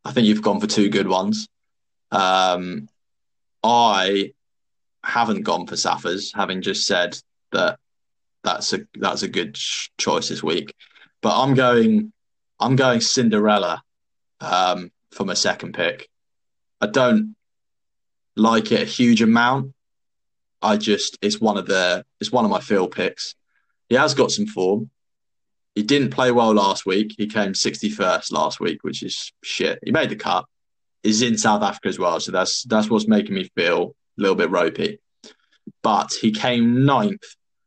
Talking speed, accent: 160 wpm, British